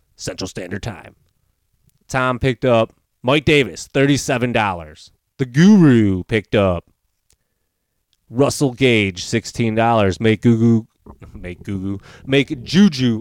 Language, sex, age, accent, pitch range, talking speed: English, male, 20-39, American, 110-140 Hz, 100 wpm